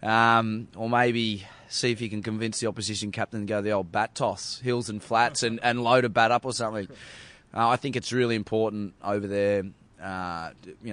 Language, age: English, 20-39